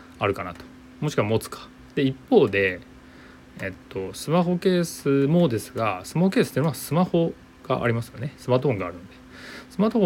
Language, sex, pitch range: Japanese, male, 100-145 Hz